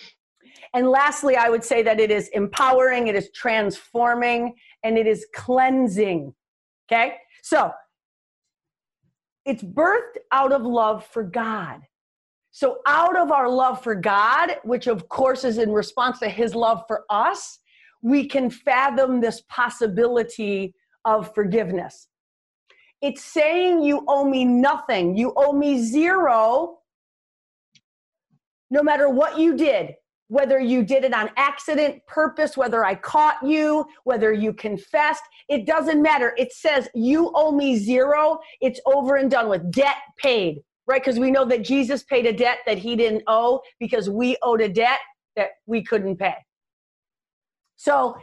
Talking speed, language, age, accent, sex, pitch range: 145 wpm, English, 40-59, American, female, 225-280 Hz